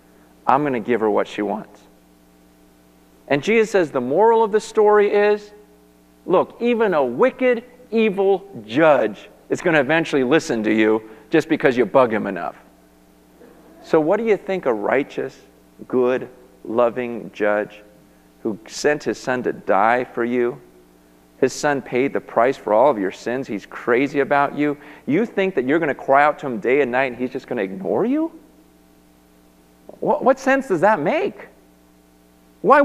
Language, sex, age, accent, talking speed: English, male, 40-59, American, 170 wpm